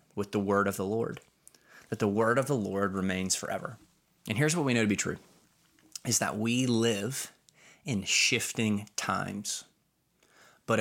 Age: 20-39